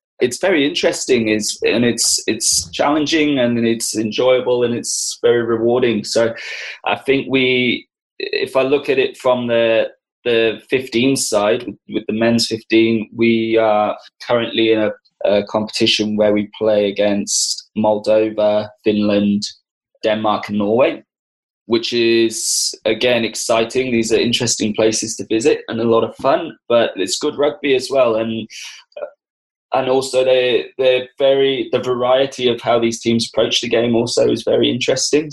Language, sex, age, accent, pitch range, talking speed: English, male, 20-39, British, 105-120 Hz, 150 wpm